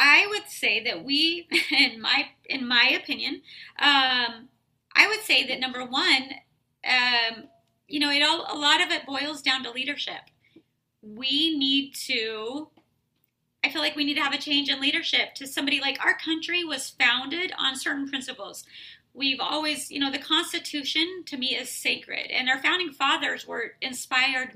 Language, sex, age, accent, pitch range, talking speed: English, female, 30-49, American, 255-310 Hz, 170 wpm